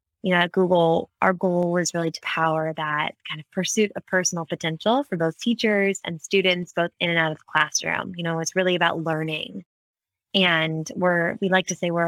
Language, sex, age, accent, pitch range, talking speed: English, female, 20-39, American, 160-190 Hz, 210 wpm